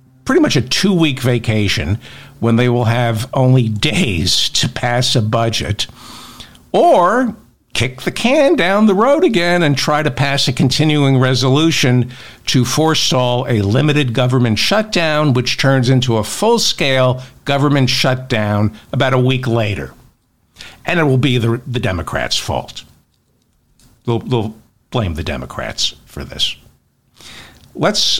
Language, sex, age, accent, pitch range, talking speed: English, male, 60-79, American, 110-140 Hz, 140 wpm